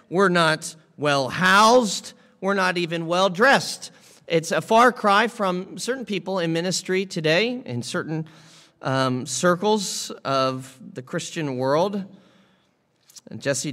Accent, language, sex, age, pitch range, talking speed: American, English, male, 40-59, 135-175 Hz, 115 wpm